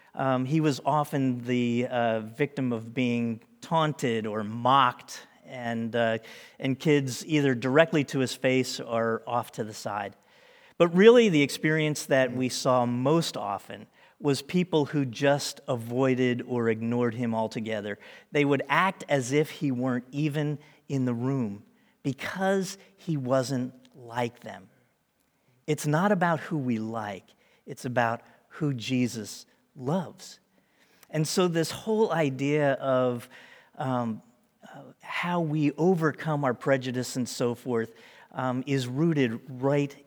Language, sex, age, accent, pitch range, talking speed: English, male, 40-59, American, 120-150 Hz, 135 wpm